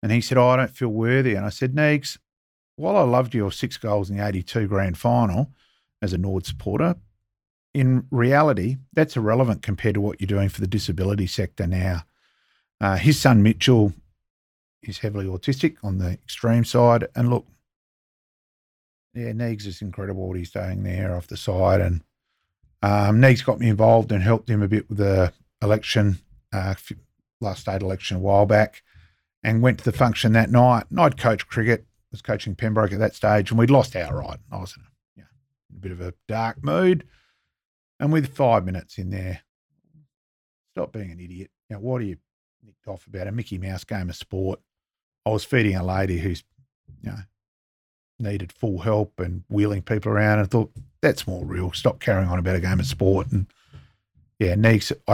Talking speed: 190 wpm